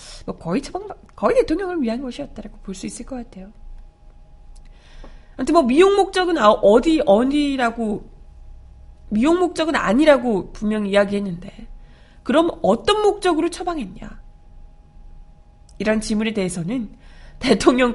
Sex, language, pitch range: female, Korean, 200-315 Hz